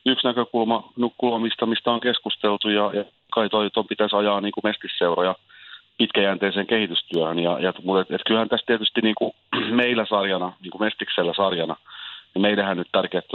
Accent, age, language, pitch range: native, 30-49, Finnish, 90-105 Hz